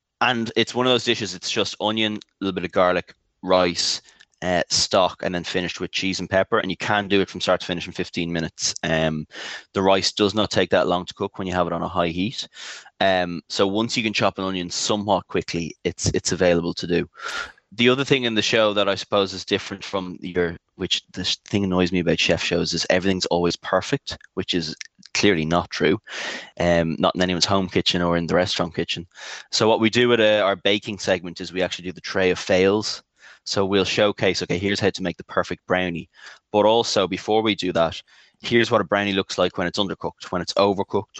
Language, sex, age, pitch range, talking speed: English, male, 20-39, 90-105 Hz, 225 wpm